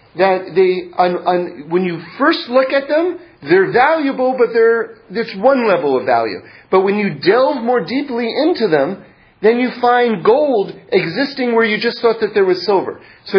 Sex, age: male, 40-59